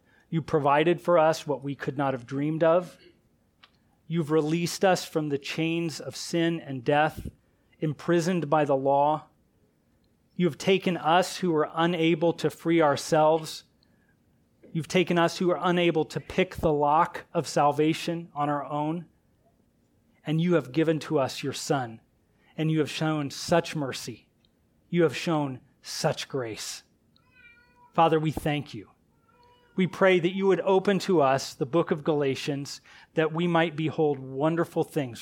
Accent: American